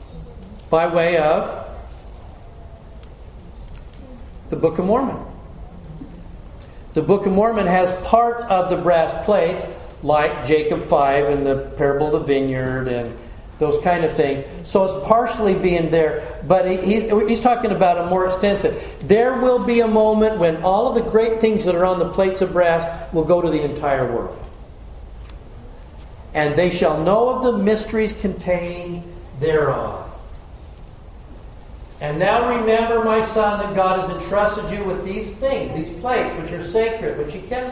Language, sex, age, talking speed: English, male, 50-69, 155 wpm